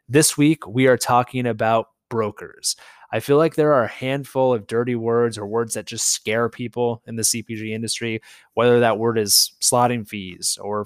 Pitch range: 110-130 Hz